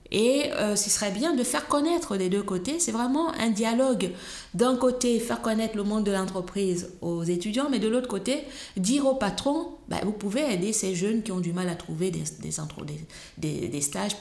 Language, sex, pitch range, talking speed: French, female, 170-210 Hz, 195 wpm